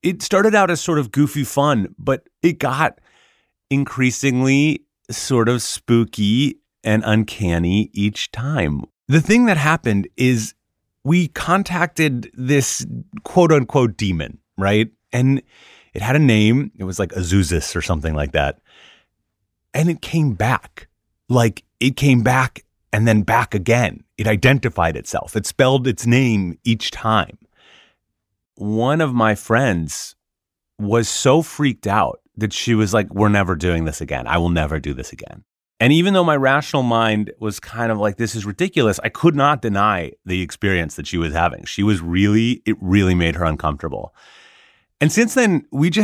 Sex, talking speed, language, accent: male, 160 wpm, English, American